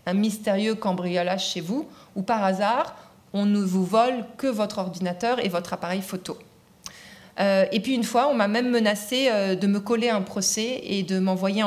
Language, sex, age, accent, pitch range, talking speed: French, female, 40-59, French, 190-235 Hz, 195 wpm